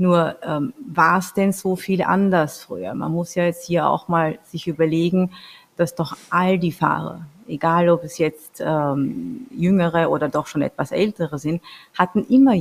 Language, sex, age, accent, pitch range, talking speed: German, female, 30-49, German, 165-220 Hz, 170 wpm